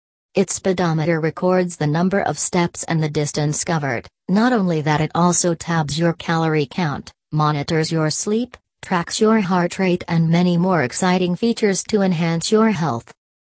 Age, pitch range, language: 40-59, 145-180 Hz, English